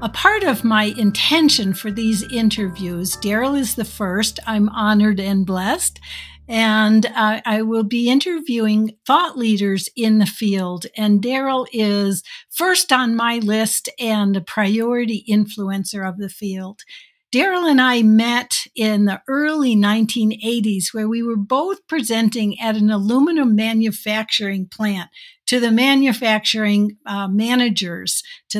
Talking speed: 135 wpm